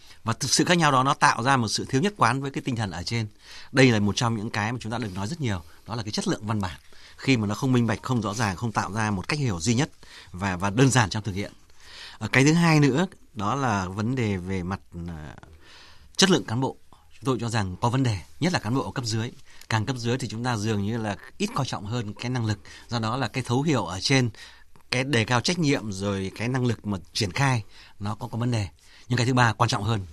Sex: male